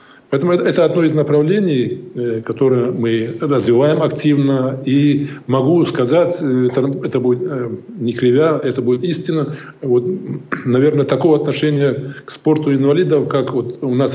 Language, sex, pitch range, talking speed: Russian, male, 120-145 Hz, 130 wpm